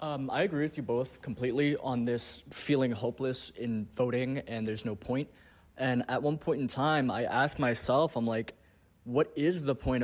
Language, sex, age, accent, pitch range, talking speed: English, male, 20-39, American, 105-130 Hz, 190 wpm